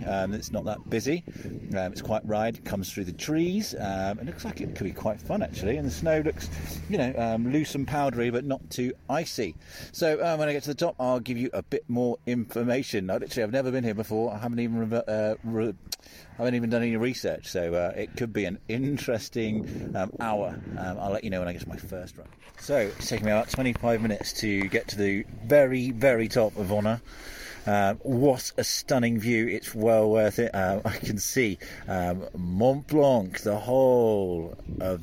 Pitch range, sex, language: 95-120 Hz, male, English